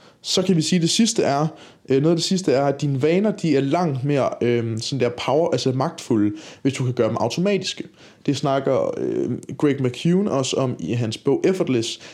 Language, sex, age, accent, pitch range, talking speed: Danish, male, 20-39, native, 125-160 Hz, 215 wpm